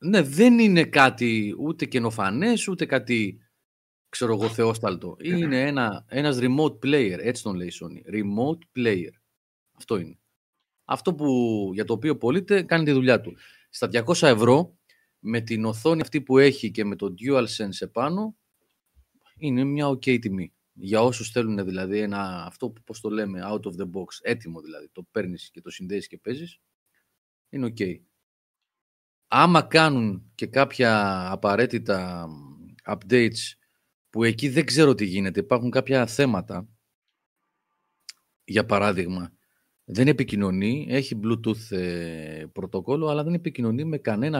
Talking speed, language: 140 wpm, Greek